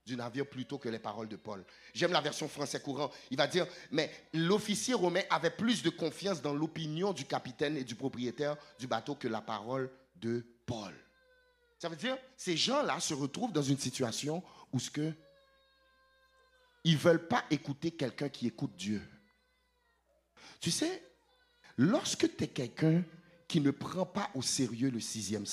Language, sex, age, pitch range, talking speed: English, male, 50-69, 130-210 Hz, 170 wpm